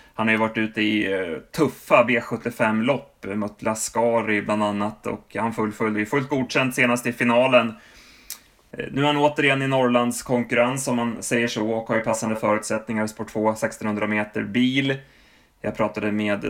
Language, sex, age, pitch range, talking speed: Swedish, male, 20-39, 105-125 Hz, 165 wpm